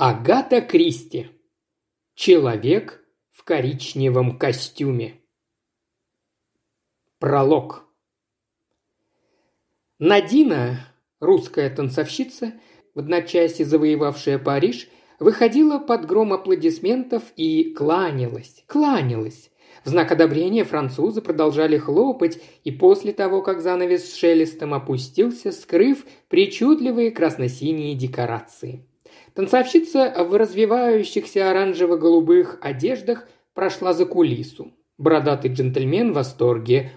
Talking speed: 85 wpm